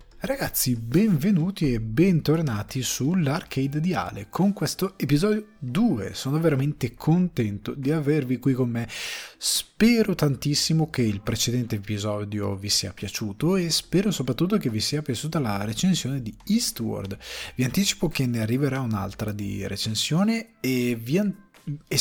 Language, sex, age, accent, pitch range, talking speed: Italian, male, 20-39, native, 110-155 Hz, 135 wpm